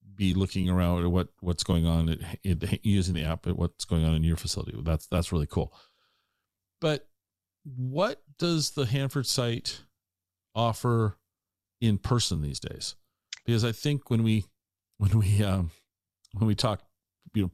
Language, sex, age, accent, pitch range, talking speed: English, male, 40-59, American, 90-125 Hz, 165 wpm